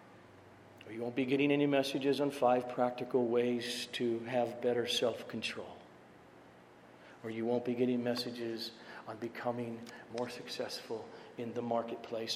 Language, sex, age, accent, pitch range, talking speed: English, male, 50-69, American, 120-150 Hz, 130 wpm